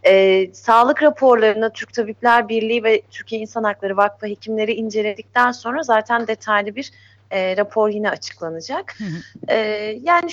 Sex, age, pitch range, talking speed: female, 30-49, 190-245 Hz, 135 wpm